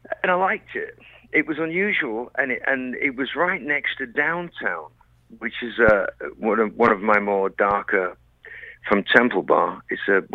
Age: 60-79